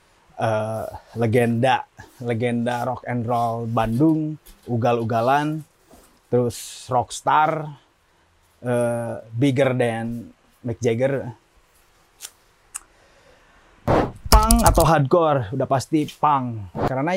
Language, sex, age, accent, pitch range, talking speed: Indonesian, male, 30-49, native, 115-155 Hz, 75 wpm